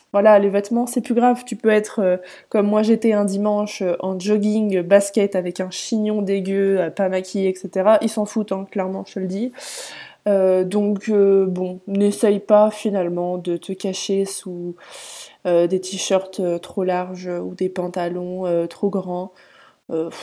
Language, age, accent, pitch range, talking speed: French, 20-39, French, 185-215 Hz, 180 wpm